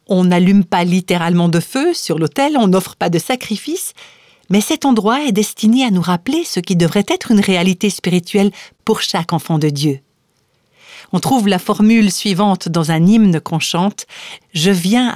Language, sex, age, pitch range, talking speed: French, female, 50-69, 175-220 Hz, 180 wpm